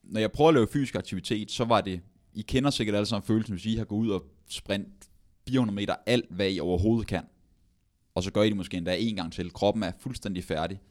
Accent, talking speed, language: native, 240 wpm, Danish